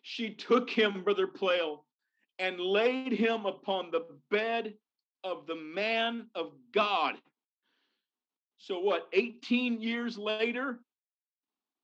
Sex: male